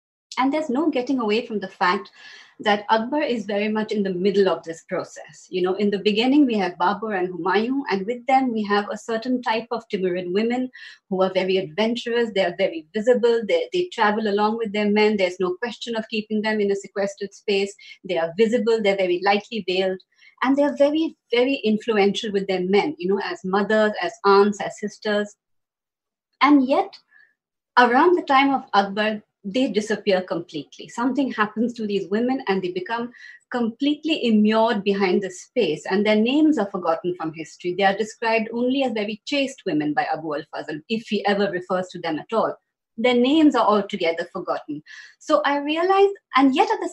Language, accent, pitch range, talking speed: Hindi, native, 195-250 Hz, 190 wpm